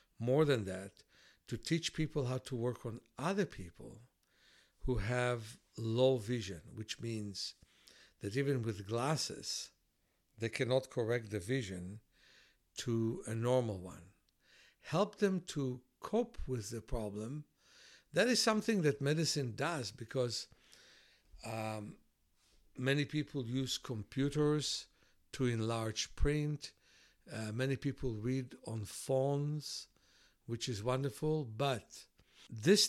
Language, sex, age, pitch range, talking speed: English, male, 60-79, 110-150 Hz, 115 wpm